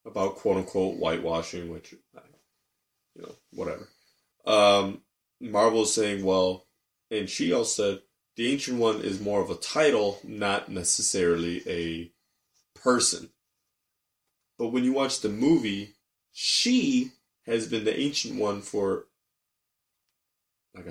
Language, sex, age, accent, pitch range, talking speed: English, male, 20-39, American, 100-125 Hz, 120 wpm